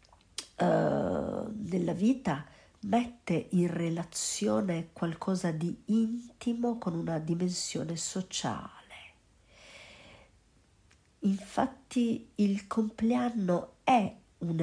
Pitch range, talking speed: 165-215 Hz, 70 wpm